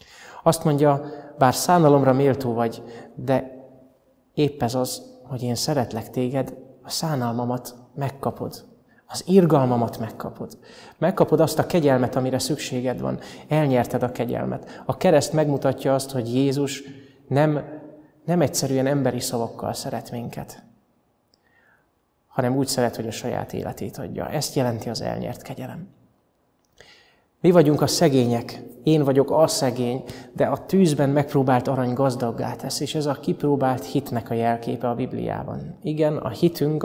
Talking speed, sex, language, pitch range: 135 wpm, male, Hungarian, 125-145 Hz